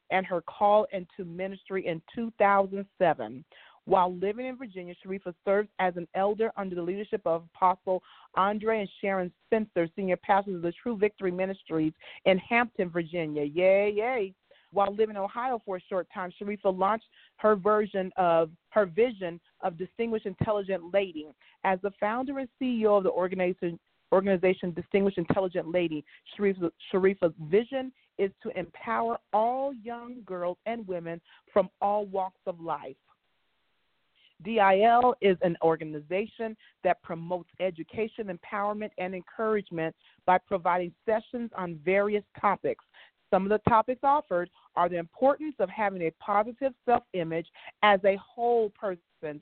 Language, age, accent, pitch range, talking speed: English, 40-59, American, 175-215 Hz, 145 wpm